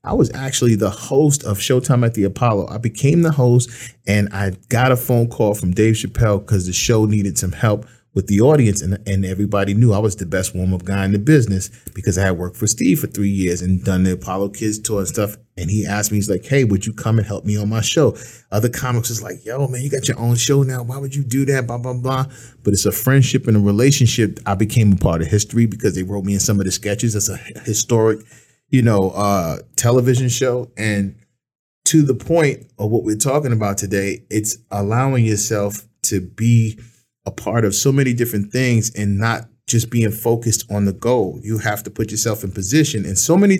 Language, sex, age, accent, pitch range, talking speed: English, male, 30-49, American, 100-125 Hz, 230 wpm